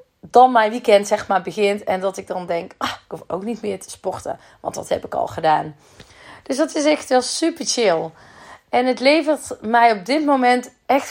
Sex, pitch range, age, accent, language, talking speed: female, 185-240 Hz, 30-49, Dutch, Dutch, 215 wpm